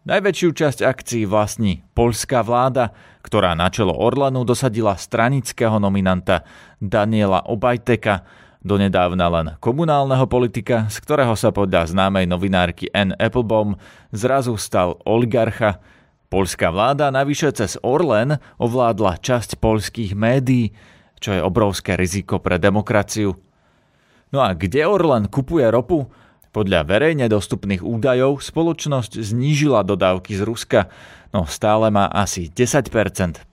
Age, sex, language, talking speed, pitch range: 30-49, male, Slovak, 115 wpm, 100-125 Hz